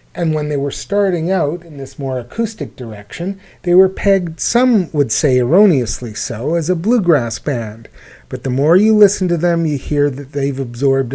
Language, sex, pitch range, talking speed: English, male, 125-170 Hz, 190 wpm